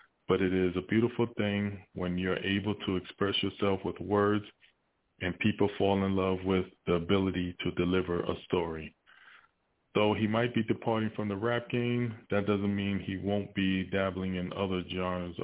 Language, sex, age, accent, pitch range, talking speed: English, male, 20-39, American, 90-110 Hz, 175 wpm